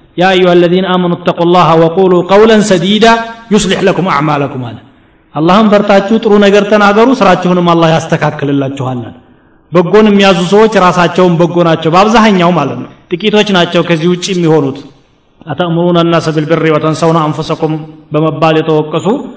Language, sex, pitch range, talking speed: Amharic, male, 160-200 Hz, 125 wpm